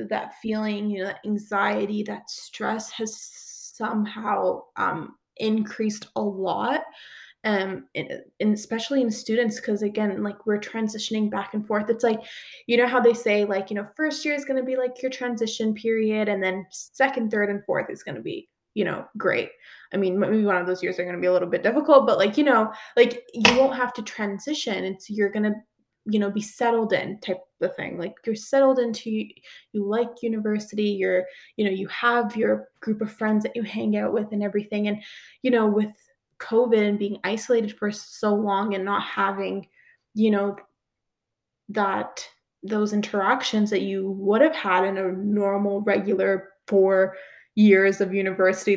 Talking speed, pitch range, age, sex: 190 wpm, 200-235 Hz, 20-39, female